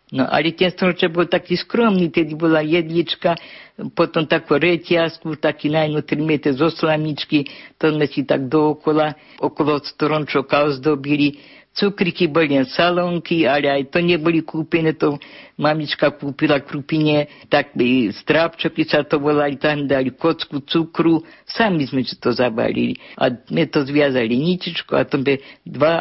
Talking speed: 145 wpm